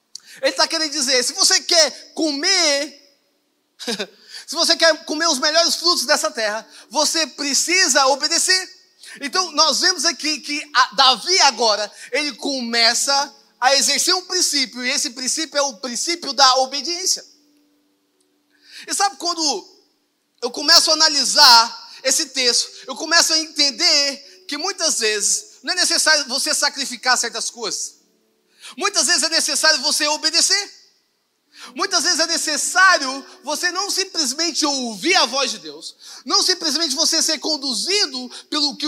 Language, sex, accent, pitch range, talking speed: Portuguese, male, Brazilian, 270-340 Hz, 140 wpm